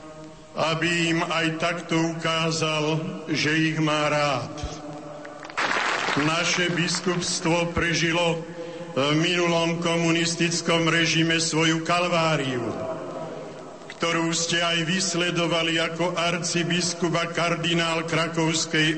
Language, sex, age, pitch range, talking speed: Slovak, male, 50-69, 155-175 Hz, 80 wpm